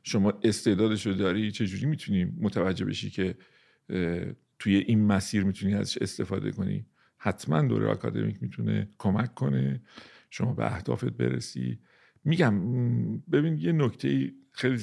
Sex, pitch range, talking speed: male, 95-130 Hz, 125 wpm